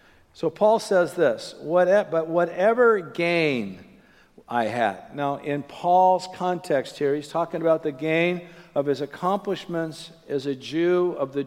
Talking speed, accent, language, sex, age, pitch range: 140 wpm, American, English, male, 50-69, 150-175 Hz